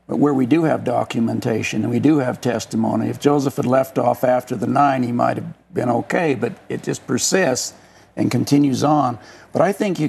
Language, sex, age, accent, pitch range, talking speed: English, male, 60-79, American, 120-140 Hz, 210 wpm